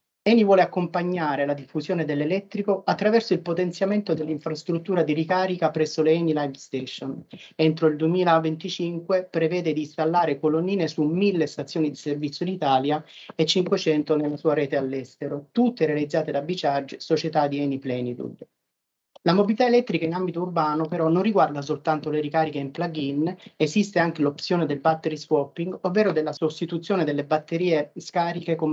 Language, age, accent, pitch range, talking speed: Italian, 30-49, native, 150-180 Hz, 150 wpm